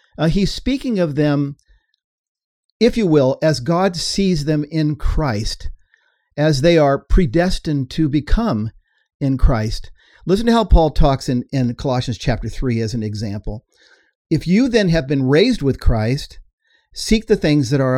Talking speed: 160 wpm